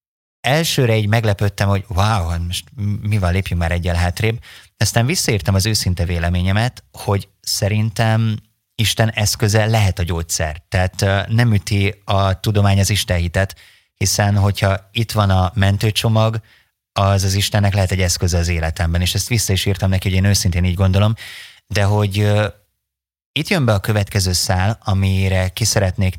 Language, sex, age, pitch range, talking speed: Hungarian, male, 30-49, 95-110 Hz, 150 wpm